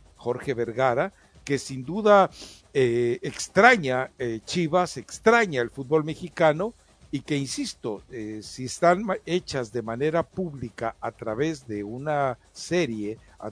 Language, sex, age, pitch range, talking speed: Spanish, male, 60-79, 125-175 Hz, 130 wpm